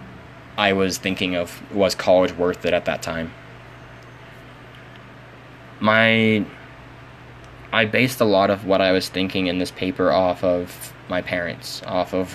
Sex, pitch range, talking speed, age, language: male, 90-110 Hz, 145 wpm, 10-29, English